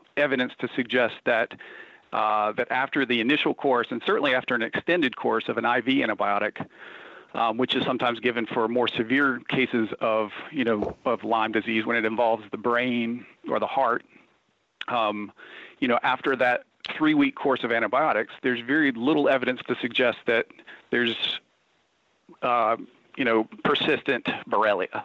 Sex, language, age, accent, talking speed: male, English, 40-59, American, 155 wpm